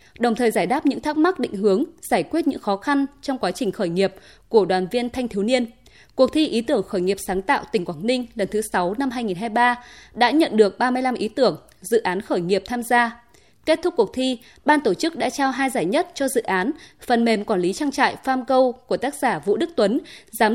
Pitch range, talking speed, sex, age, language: 205-275 Hz, 240 wpm, female, 20-39, Vietnamese